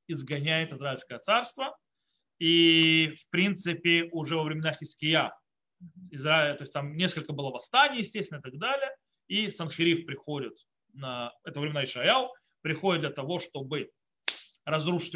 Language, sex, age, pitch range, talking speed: Russian, male, 30-49, 150-185 Hz, 135 wpm